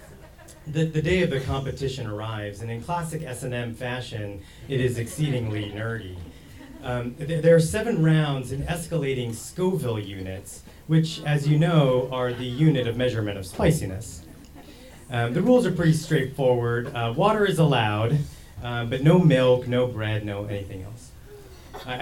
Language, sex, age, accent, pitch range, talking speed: English, male, 30-49, American, 110-155 Hz, 160 wpm